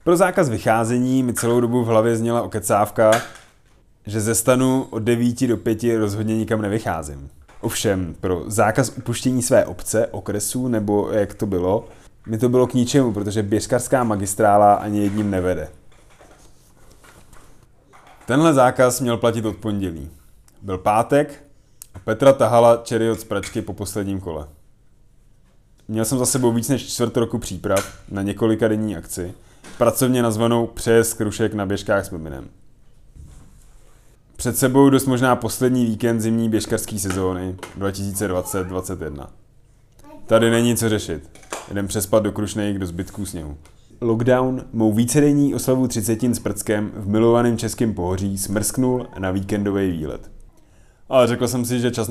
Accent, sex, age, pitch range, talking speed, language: native, male, 20-39, 100-120 Hz, 140 wpm, Czech